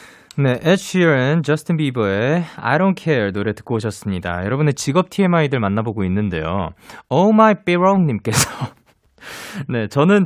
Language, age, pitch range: Korean, 20-39, 120-205 Hz